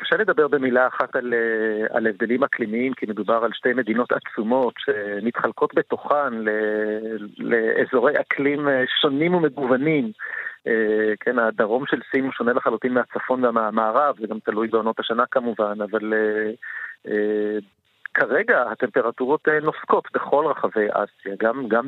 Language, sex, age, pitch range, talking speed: Hebrew, male, 40-59, 110-155 Hz, 120 wpm